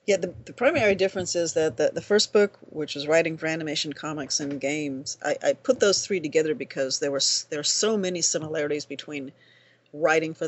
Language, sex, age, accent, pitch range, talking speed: English, female, 40-59, American, 140-175 Hz, 200 wpm